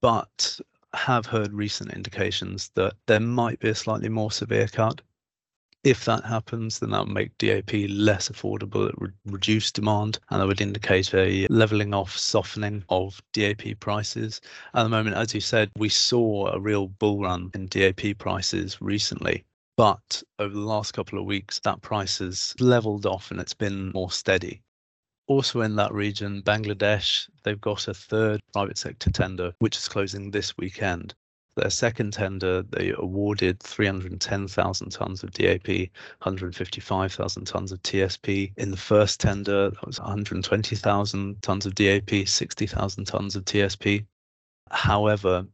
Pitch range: 95-110 Hz